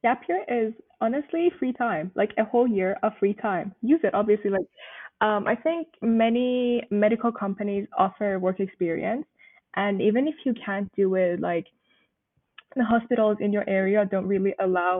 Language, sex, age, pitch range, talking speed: English, female, 10-29, 195-235 Hz, 170 wpm